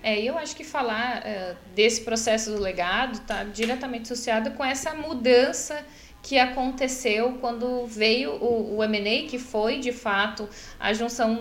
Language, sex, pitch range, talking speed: Portuguese, female, 220-250 Hz, 155 wpm